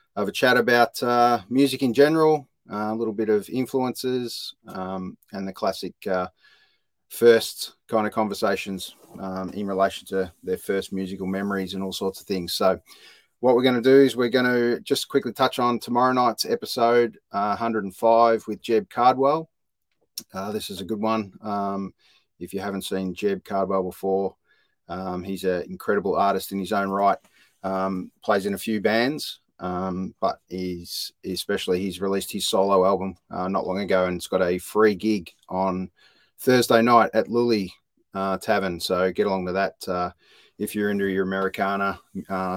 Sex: male